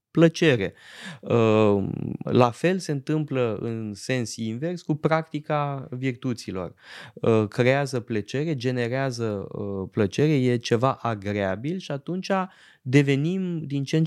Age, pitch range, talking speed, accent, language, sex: 20-39, 110-145 Hz, 115 wpm, native, Romanian, male